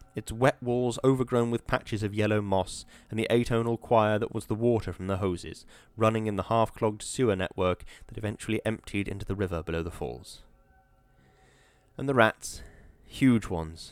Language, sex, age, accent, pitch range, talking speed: English, male, 10-29, British, 95-115 Hz, 170 wpm